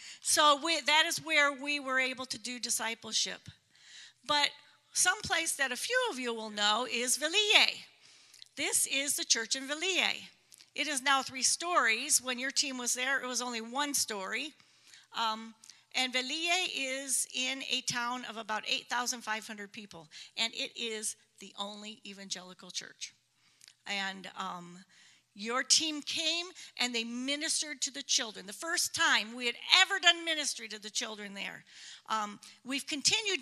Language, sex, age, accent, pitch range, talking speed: English, female, 50-69, American, 230-300 Hz, 160 wpm